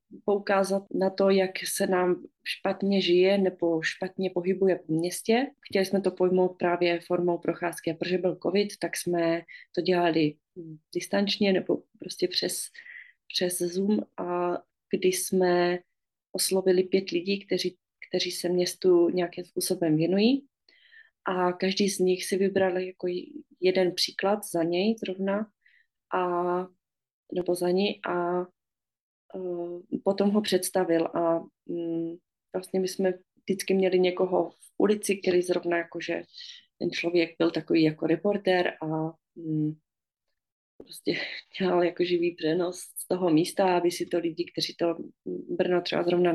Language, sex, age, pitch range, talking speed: Czech, female, 30-49, 175-195 Hz, 135 wpm